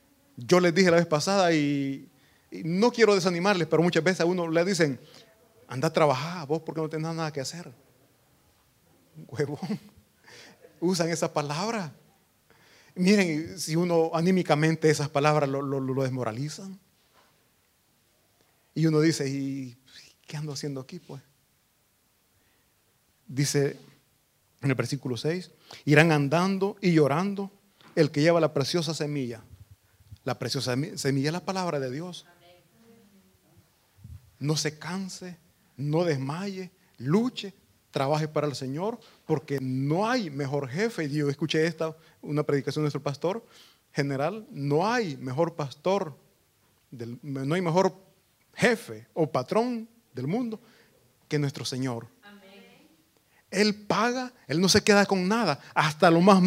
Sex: male